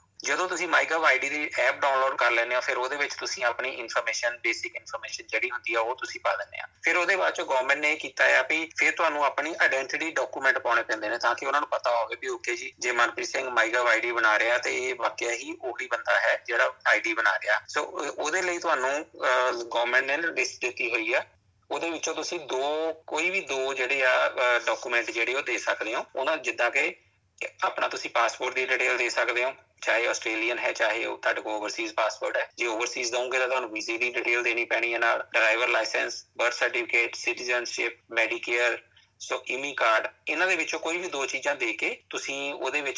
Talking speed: 210 wpm